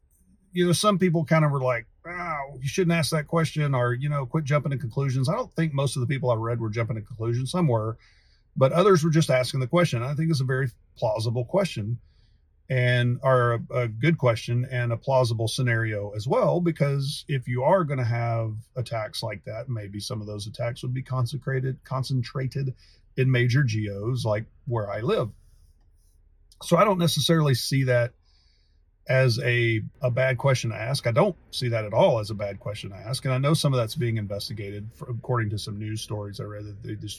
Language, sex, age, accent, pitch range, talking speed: English, male, 40-59, American, 105-135 Hz, 215 wpm